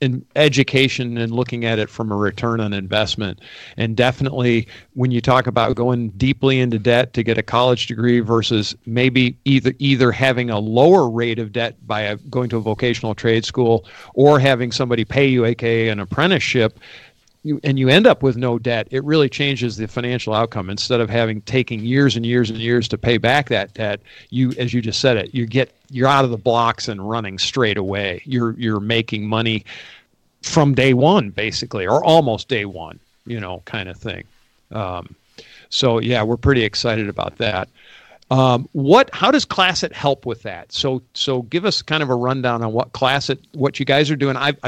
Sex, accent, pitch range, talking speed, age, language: male, American, 115-135 Hz, 195 wpm, 50-69, English